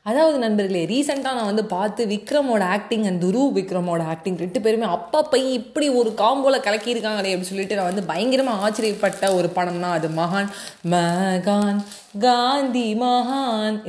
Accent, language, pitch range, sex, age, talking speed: native, Tamil, 190-240 Hz, female, 20-39, 145 wpm